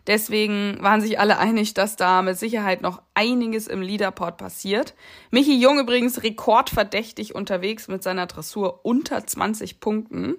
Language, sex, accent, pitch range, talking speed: German, female, German, 190-235 Hz, 145 wpm